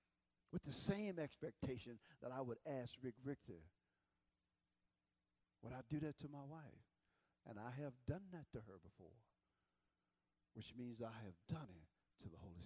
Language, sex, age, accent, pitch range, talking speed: English, male, 50-69, American, 120-185 Hz, 160 wpm